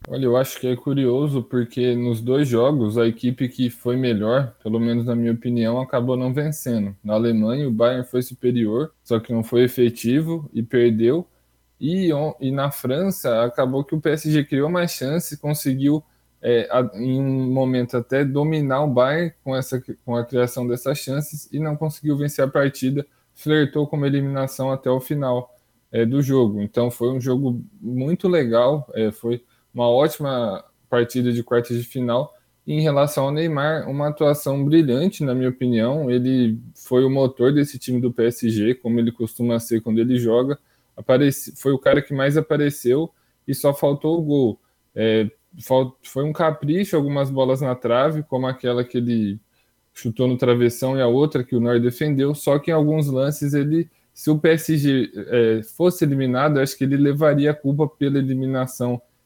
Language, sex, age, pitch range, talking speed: Portuguese, male, 10-29, 120-145 Hz, 170 wpm